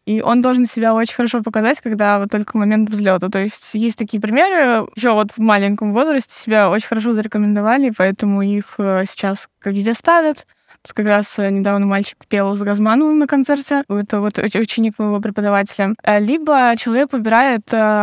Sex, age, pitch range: female, 20-39, 210-250 Hz